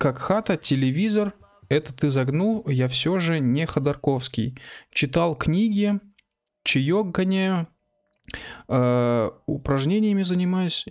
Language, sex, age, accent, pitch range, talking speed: Russian, male, 20-39, native, 130-165 Hz, 90 wpm